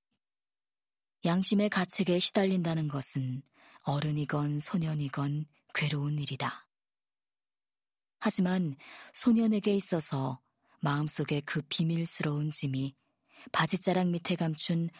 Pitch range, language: 145-180 Hz, Korean